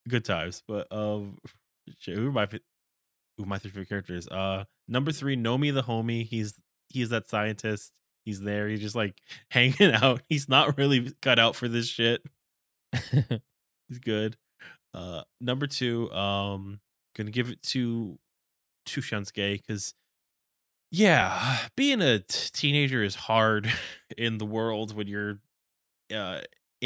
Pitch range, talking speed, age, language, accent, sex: 95-115 Hz, 145 wpm, 10-29, English, American, male